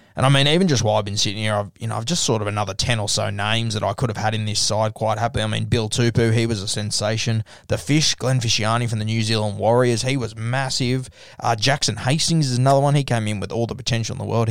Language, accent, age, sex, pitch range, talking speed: English, Australian, 20-39, male, 110-125 Hz, 280 wpm